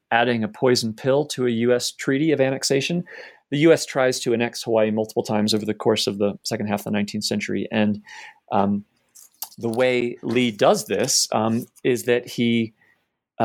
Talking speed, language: 180 wpm, English